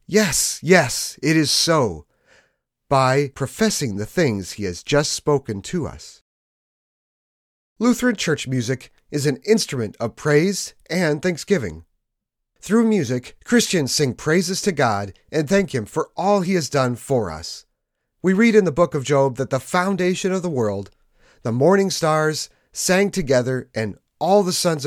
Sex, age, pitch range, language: male, 30-49, 125-185 Hz, English